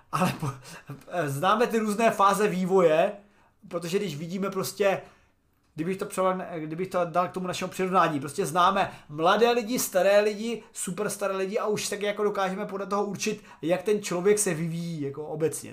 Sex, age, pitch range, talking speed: male, 30-49, 175-235 Hz, 165 wpm